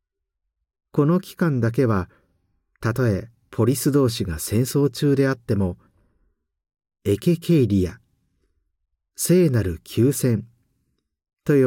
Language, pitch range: Japanese, 80-130 Hz